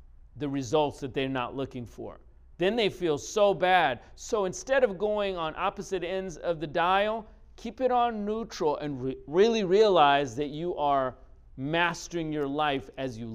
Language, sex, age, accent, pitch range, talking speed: English, male, 40-59, American, 135-185 Hz, 165 wpm